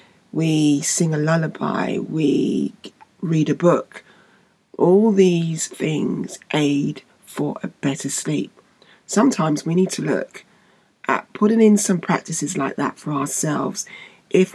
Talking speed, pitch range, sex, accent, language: 130 wpm, 150-200 Hz, female, British, English